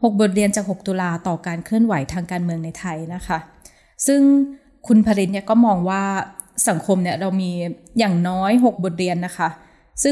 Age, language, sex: 20-39, Thai, female